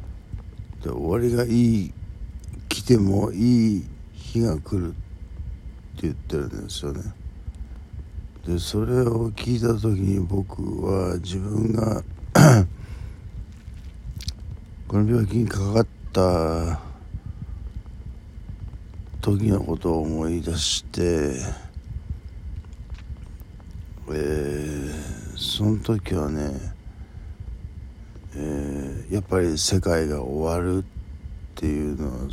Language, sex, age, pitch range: Japanese, male, 60-79, 80-100 Hz